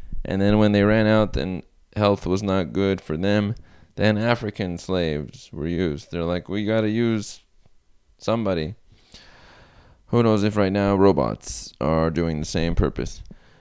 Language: English